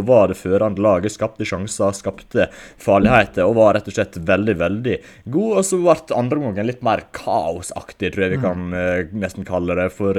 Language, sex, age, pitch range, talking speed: English, male, 20-39, 90-110 Hz, 175 wpm